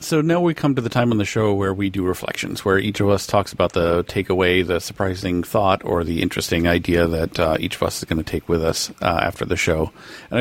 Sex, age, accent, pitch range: male, 40-59, American, 85-100 Hz